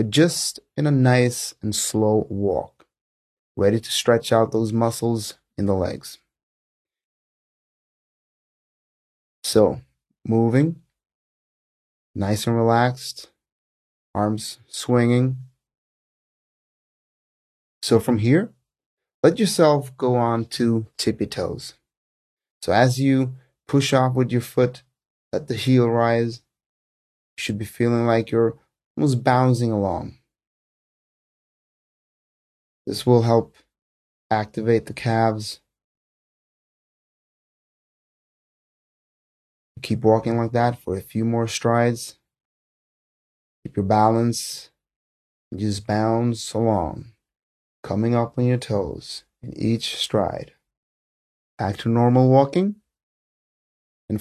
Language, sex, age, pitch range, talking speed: English, male, 30-49, 105-125 Hz, 95 wpm